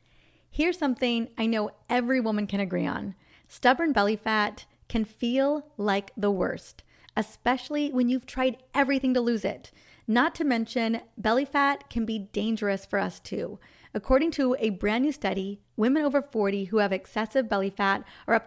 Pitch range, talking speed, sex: 205-260 Hz, 170 wpm, female